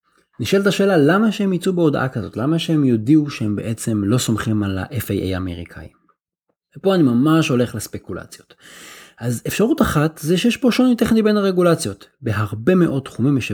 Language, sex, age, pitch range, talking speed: Hebrew, male, 30-49, 110-160 Hz, 160 wpm